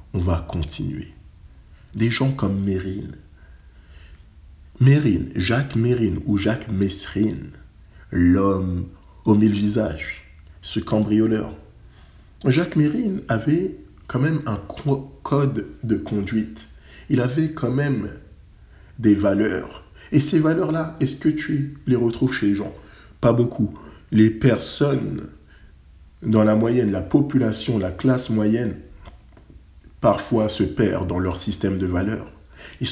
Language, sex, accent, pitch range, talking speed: French, male, French, 85-125 Hz, 120 wpm